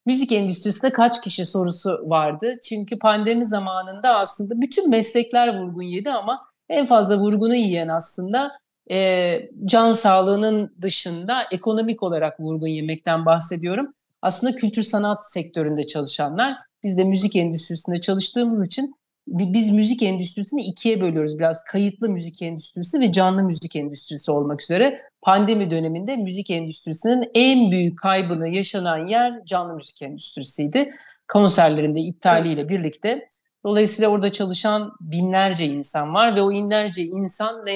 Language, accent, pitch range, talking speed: Turkish, native, 170-225 Hz, 130 wpm